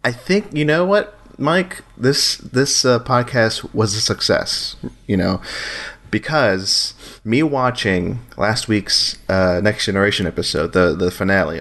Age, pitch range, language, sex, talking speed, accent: 30-49, 100-130 Hz, English, male, 140 wpm, American